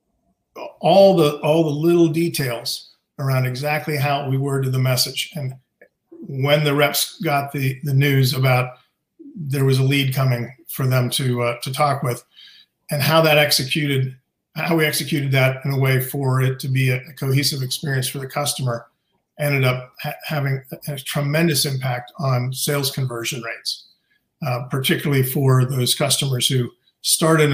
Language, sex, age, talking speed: English, male, 50-69, 160 wpm